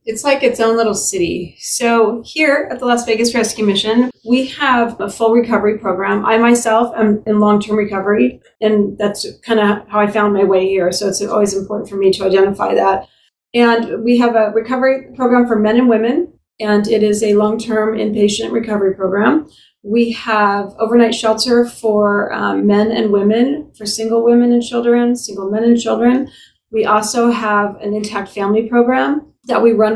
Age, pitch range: 30-49, 205-235 Hz